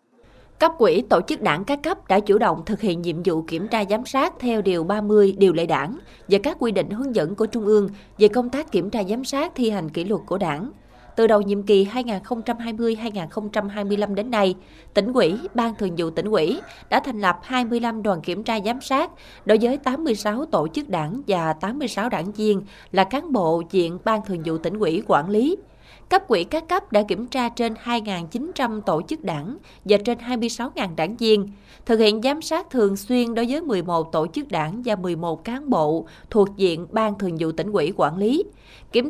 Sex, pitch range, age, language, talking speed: female, 190-240 Hz, 20-39, Vietnamese, 205 wpm